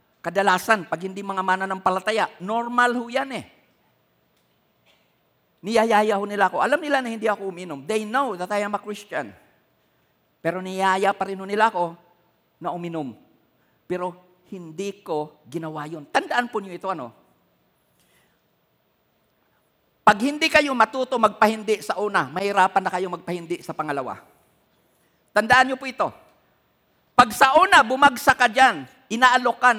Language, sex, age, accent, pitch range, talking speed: Filipino, male, 50-69, native, 185-240 Hz, 135 wpm